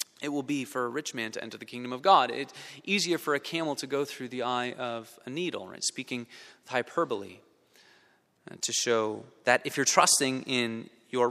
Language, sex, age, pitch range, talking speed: English, male, 30-49, 120-170 Hz, 205 wpm